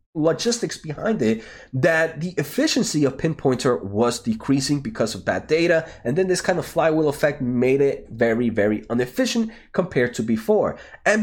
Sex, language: male, English